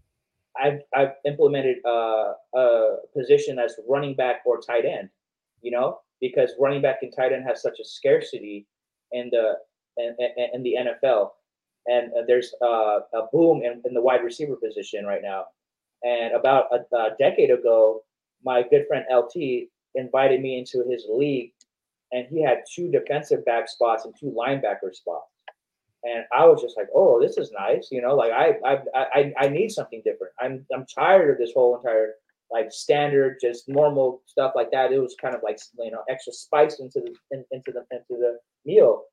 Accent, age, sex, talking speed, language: American, 30-49, male, 180 wpm, English